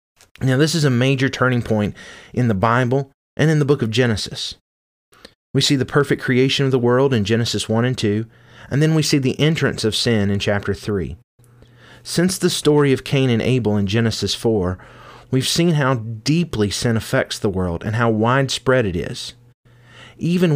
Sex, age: male, 30-49